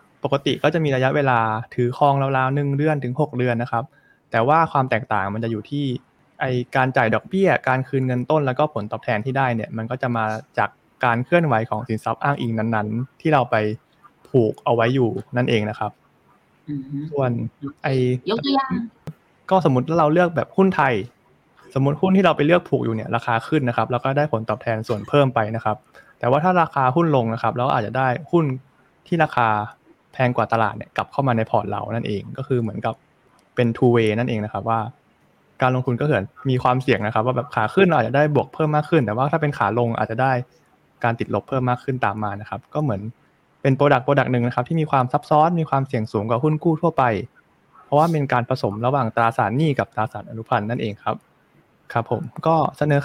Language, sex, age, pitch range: Thai, male, 20-39, 115-150 Hz